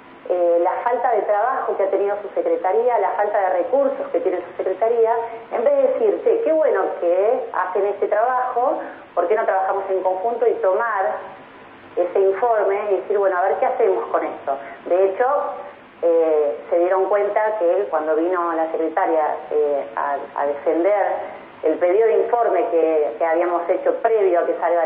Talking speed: 180 wpm